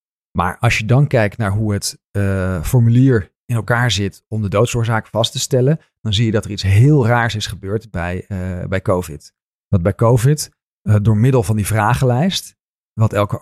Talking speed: 195 wpm